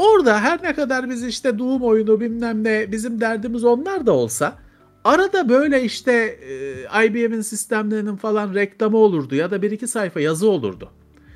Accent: native